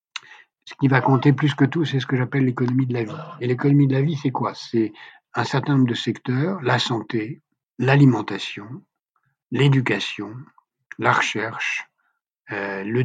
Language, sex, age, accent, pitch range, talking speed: French, male, 60-79, French, 115-145 Hz, 165 wpm